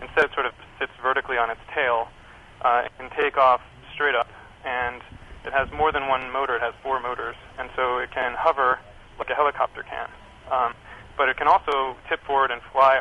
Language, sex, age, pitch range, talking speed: English, male, 30-49, 120-130 Hz, 210 wpm